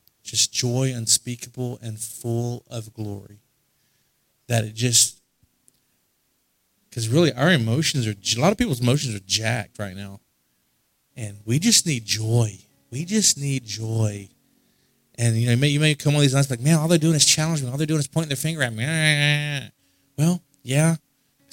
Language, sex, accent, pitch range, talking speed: English, male, American, 115-145 Hz, 175 wpm